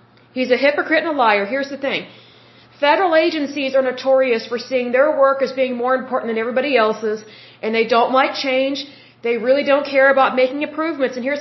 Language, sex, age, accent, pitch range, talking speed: English, female, 40-59, American, 245-290 Hz, 200 wpm